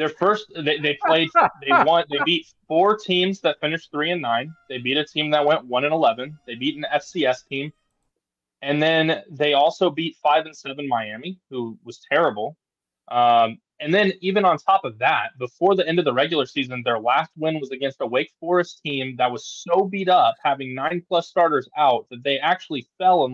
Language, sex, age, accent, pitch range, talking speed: English, male, 20-39, American, 125-170 Hz, 210 wpm